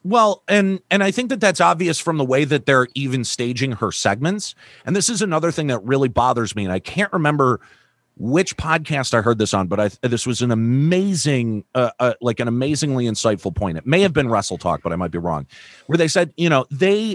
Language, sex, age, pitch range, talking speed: English, male, 40-59, 120-180 Hz, 225 wpm